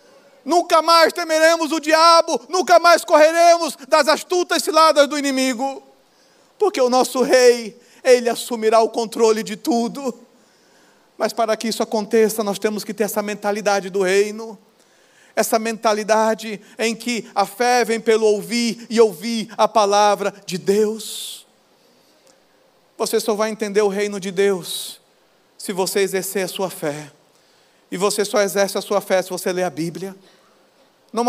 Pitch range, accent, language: 215-285 Hz, Brazilian, Portuguese